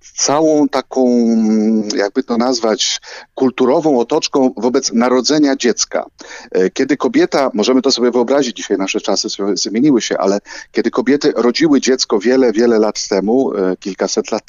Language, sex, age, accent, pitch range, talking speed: Polish, male, 40-59, native, 115-155 Hz, 135 wpm